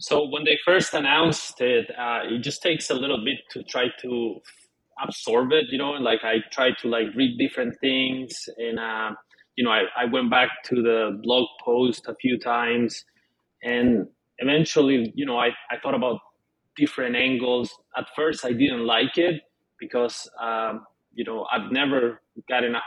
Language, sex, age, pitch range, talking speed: English, male, 20-39, 115-135 Hz, 180 wpm